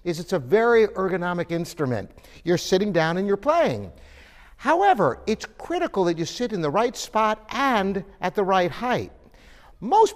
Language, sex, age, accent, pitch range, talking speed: English, male, 60-79, American, 160-220 Hz, 165 wpm